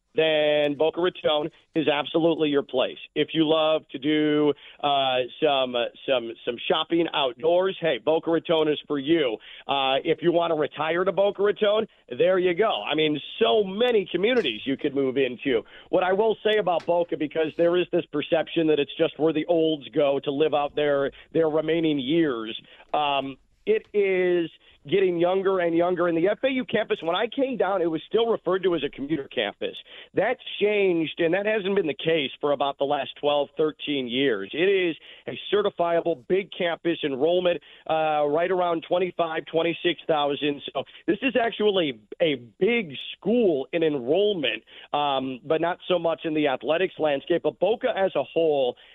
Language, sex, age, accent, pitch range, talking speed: English, male, 40-59, American, 150-190 Hz, 180 wpm